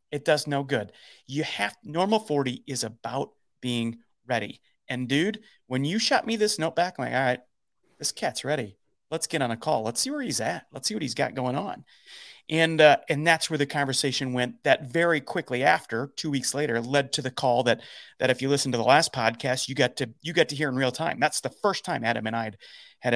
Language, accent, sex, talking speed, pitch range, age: English, American, male, 235 wpm, 125-195 Hz, 30-49